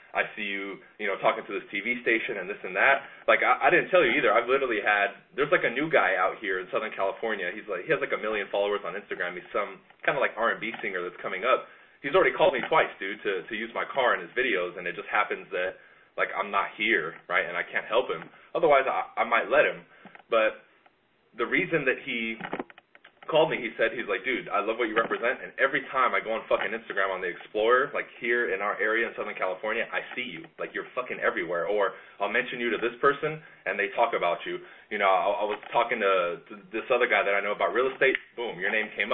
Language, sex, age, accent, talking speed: English, male, 20-39, American, 255 wpm